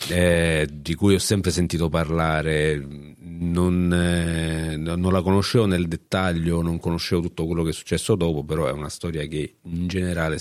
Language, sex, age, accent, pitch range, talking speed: Italian, male, 40-59, native, 80-100 Hz, 165 wpm